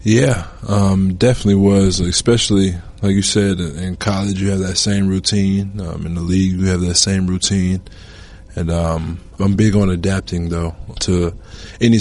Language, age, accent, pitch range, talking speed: English, 20-39, American, 85-95 Hz, 165 wpm